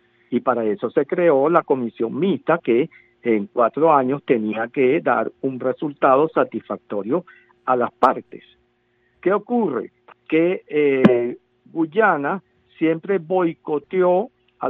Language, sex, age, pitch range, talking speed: Spanish, male, 50-69, 120-160 Hz, 120 wpm